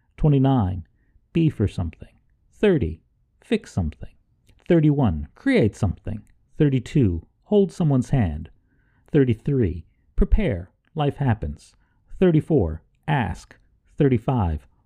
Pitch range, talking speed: 95-140 Hz, 85 wpm